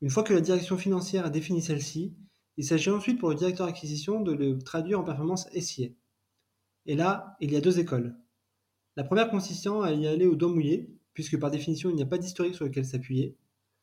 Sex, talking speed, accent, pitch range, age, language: male, 215 wpm, French, 140-190 Hz, 20-39, French